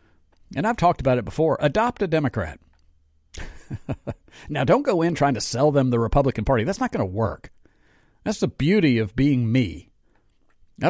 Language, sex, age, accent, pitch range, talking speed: English, male, 50-69, American, 115-160 Hz, 175 wpm